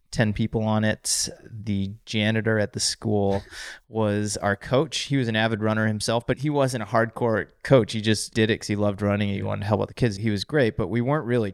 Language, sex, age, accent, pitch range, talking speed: English, male, 30-49, American, 100-110 Hz, 245 wpm